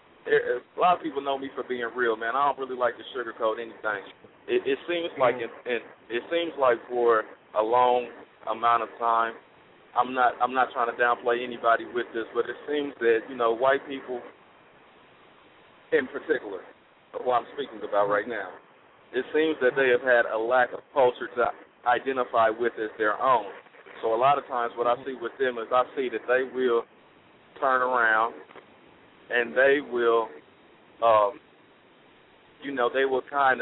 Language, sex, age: English, male, 40-59